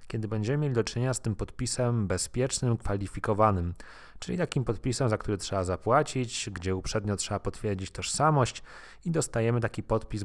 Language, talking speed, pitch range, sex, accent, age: Polish, 150 wpm, 100-135 Hz, male, native, 30-49